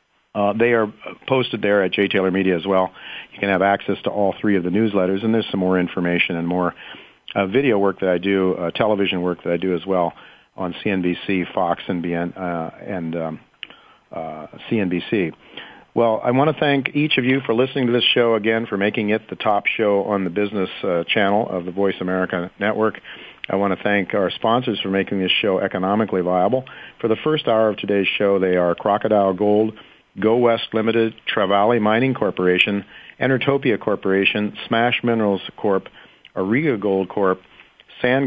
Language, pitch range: English, 95-115 Hz